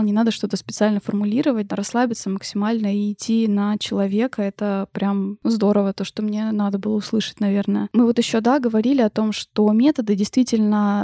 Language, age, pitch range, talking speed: Russian, 20-39, 205-240 Hz, 175 wpm